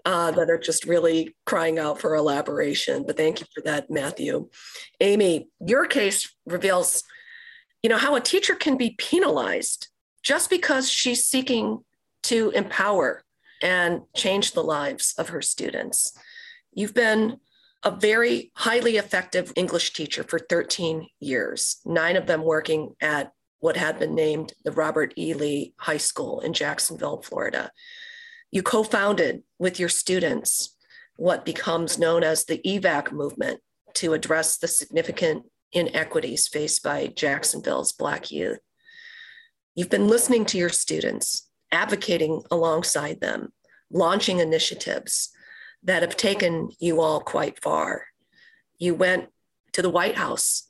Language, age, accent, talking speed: English, 40-59, American, 135 wpm